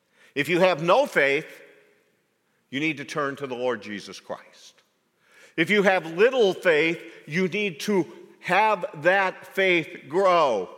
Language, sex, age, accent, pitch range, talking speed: English, male, 50-69, American, 135-195 Hz, 145 wpm